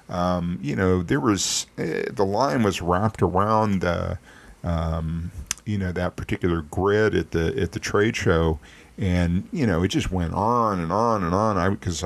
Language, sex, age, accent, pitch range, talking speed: English, male, 50-69, American, 90-110 Hz, 185 wpm